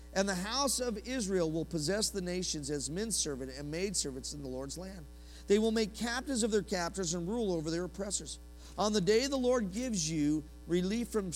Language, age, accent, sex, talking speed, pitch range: English, 40-59, American, male, 200 wpm, 155-230 Hz